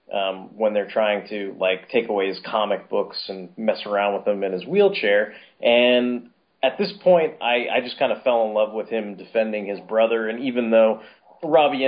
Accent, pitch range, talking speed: American, 105-135 Hz, 200 wpm